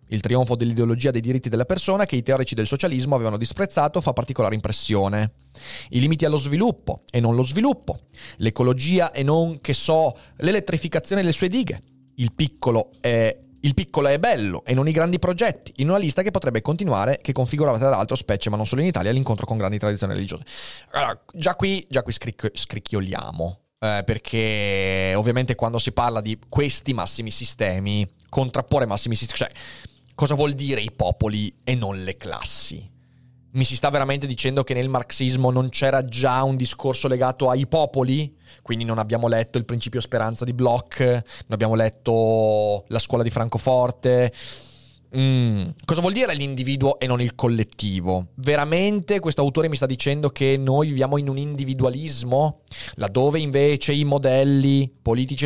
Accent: native